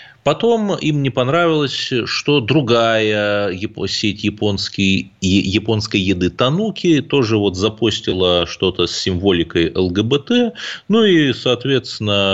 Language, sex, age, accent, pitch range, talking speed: Russian, male, 30-49, native, 95-145 Hz, 95 wpm